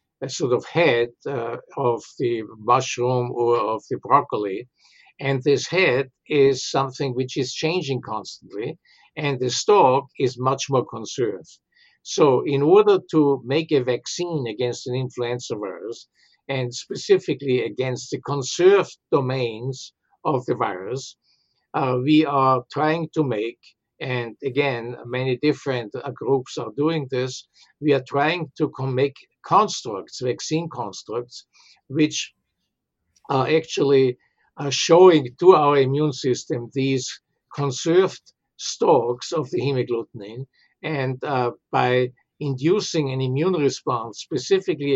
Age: 60-79